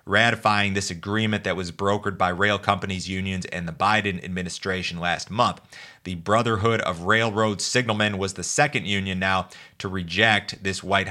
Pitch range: 90-105 Hz